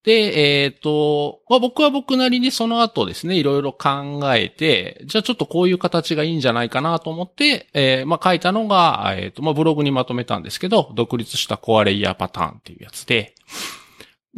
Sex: male